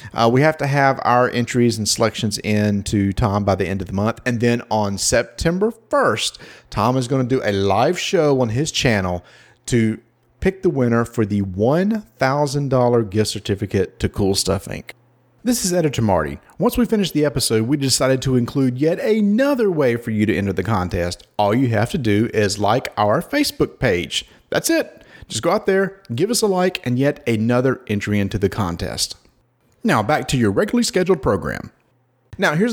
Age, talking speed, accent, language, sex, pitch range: 40-59, 195 wpm, American, English, male, 115-175 Hz